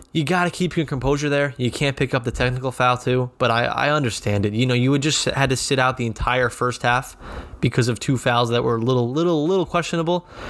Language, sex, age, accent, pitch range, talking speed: English, male, 20-39, American, 110-130 Hz, 245 wpm